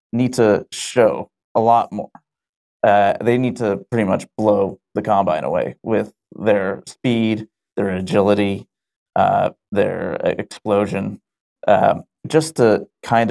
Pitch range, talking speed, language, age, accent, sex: 105-120 Hz, 125 wpm, English, 30-49, American, male